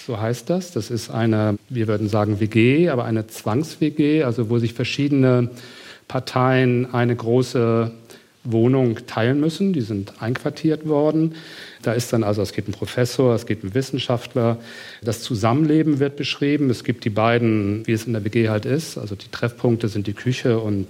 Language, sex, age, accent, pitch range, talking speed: German, male, 40-59, German, 110-140 Hz, 175 wpm